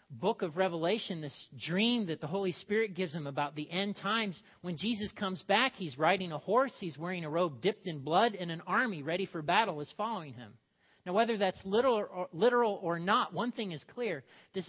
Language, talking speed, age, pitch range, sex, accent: English, 215 wpm, 40-59, 155-205 Hz, male, American